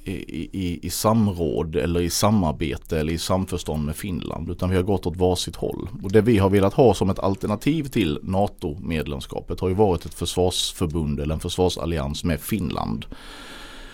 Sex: male